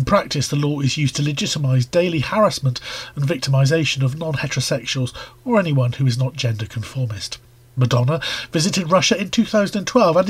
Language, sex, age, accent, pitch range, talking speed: English, male, 40-59, British, 130-180 Hz, 155 wpm